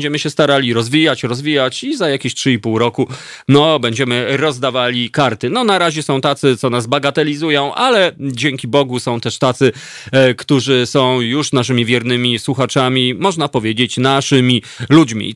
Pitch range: 125-160 Hz